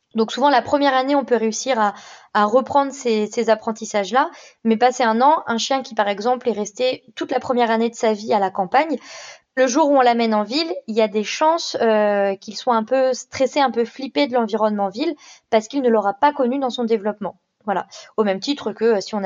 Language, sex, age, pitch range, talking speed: French, female, 20-39, 220-265 Hz, 235 wpm